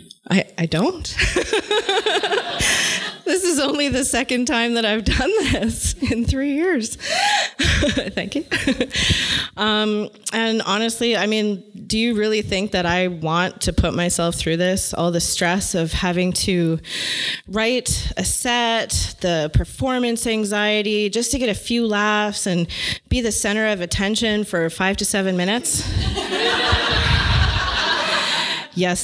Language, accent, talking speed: English, American, 135 wpm